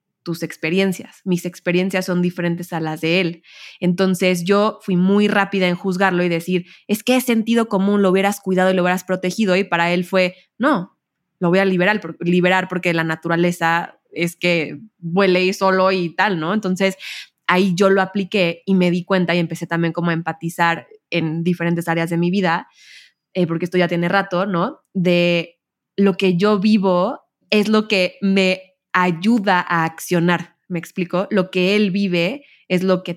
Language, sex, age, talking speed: Spanish, female, 20-39, 185 wpm